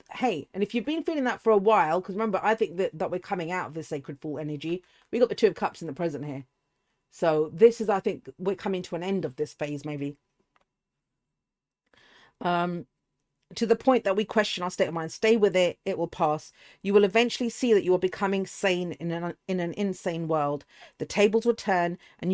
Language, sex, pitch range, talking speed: English, female, 160-200 Hz, 230 wpm